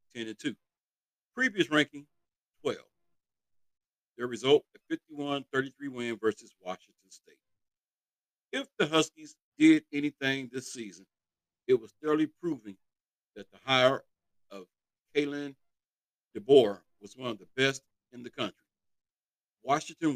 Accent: American